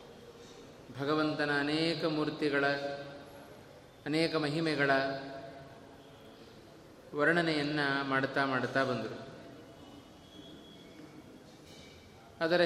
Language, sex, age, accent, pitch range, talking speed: Kannada, male, 20-39, native, 140-165 Hz, 45 wpm